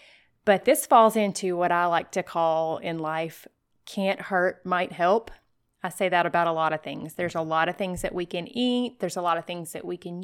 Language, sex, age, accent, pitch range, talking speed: English, female, 20-39, American, 175-225 Hz, 235 wpm